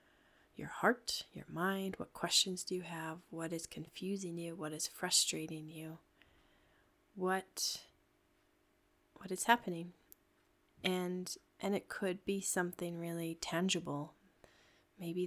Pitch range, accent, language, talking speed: 155-200 Hz, American, English, 120 wpm